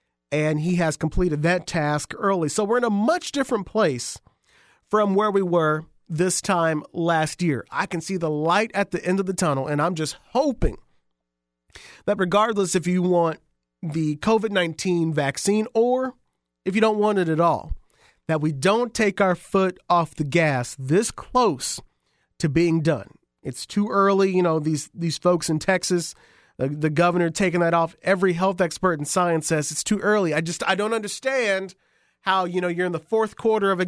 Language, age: English, 40-59